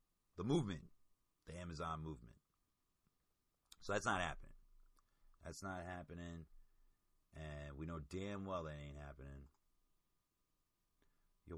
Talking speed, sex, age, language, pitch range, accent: 110 wpm, male, 30-49, English, 75-100 Hz, American